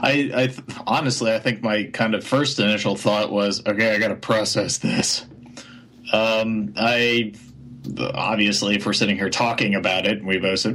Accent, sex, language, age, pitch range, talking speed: American, male, English, 30-49, 100-120 Hz, 175 wpm